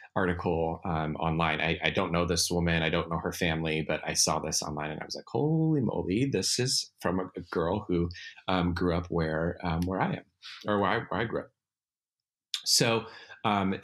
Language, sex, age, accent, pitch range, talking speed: English, male, 30-49, American, 85-105 Hz, 210 wpm